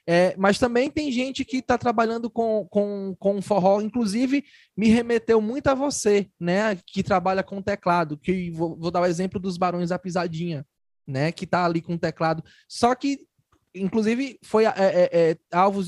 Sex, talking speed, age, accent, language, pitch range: male, 180 wpm, 20-39, Brazilian, Portuguese, 180-230 Hz